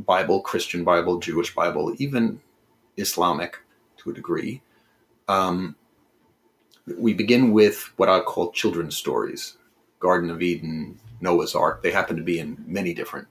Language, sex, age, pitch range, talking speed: English, male, 40-59, 100-145 Hz, 140 wpm